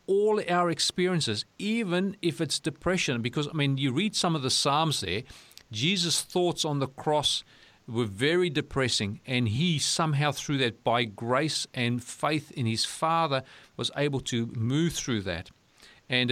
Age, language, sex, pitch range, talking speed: 40-59, English, male, 120-155 Hz, 160 wpm